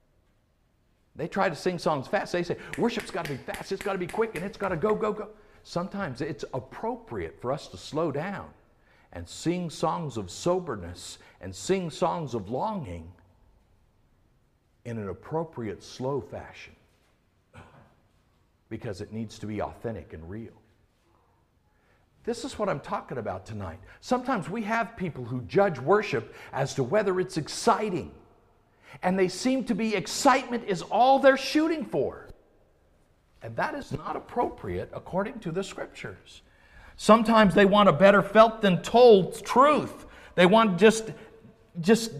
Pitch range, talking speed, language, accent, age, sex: 130-220 Hz, 150 wpm, English, American, 60-79, male